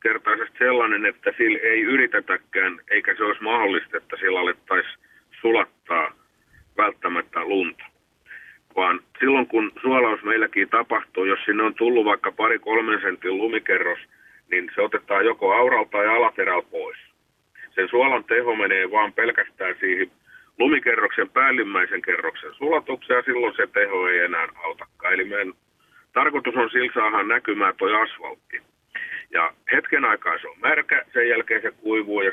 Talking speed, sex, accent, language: 140 wpm, male, native, Finnish